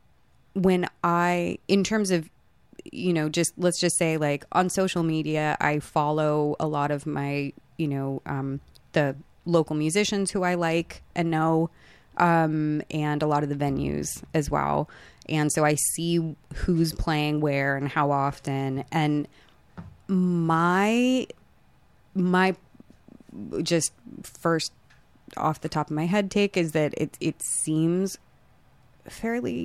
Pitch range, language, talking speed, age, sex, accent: 145-170 Hz, English, 140 wpm, 30-49, female, American